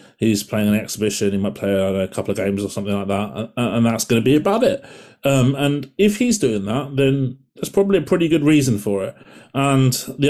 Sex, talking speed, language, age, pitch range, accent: male, 235 wpm, English, 30-49, 110-140 Hz, British